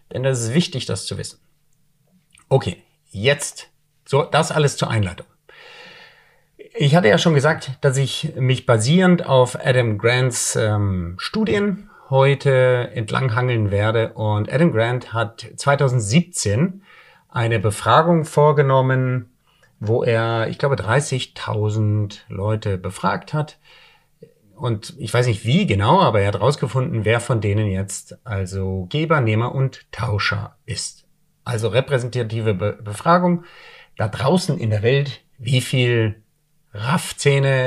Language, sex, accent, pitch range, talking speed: German, male, German, 110-150 Hz, 125 wpm